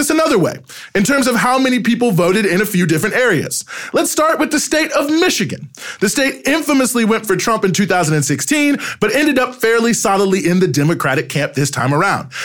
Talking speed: 200 wpm